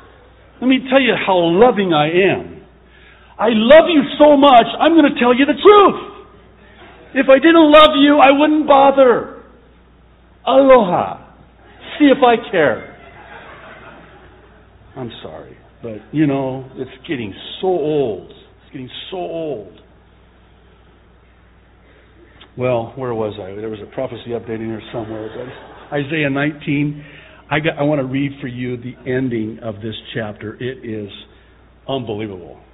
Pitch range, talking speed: 125-180 Hz, 135 wpm